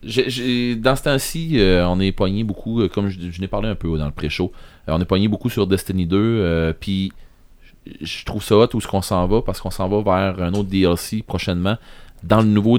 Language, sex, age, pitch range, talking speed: French, male, 30-49, 90-105 Hz, 245 wpm